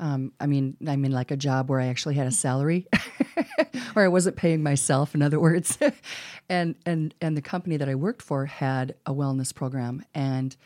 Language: English